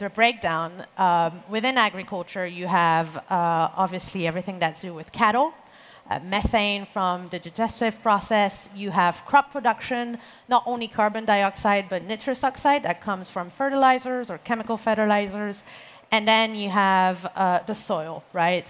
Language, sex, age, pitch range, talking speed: English, female, 40-59, 185-225 Hz, 150 wpm